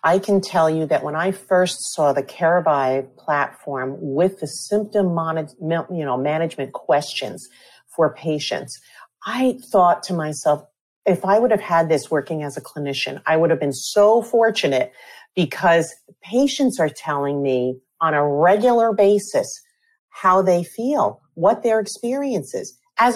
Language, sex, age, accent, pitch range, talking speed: English, female, 40-59, American, 150-205 Hz, 145 wpm